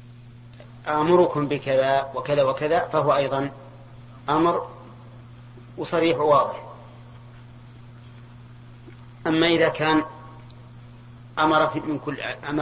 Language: Arabic